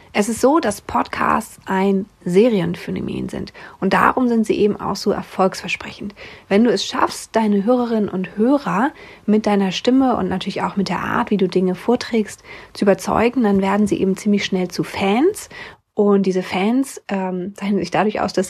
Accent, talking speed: German, 180 wpm